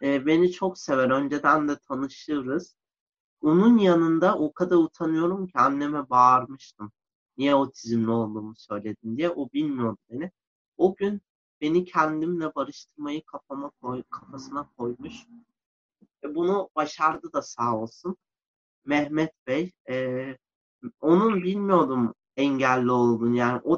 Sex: male